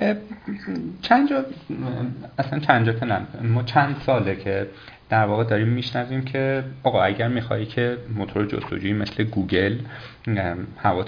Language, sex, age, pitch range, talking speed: Persian, male, 30-49, 105-135 Hz, 125 wpm